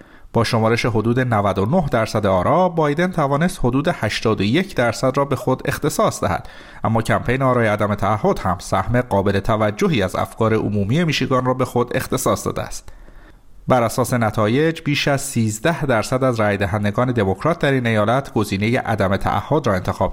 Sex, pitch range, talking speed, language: male, 105-140 Hz, 165 wpm, Persian